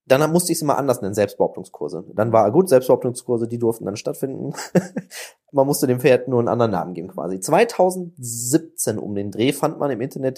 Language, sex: German, male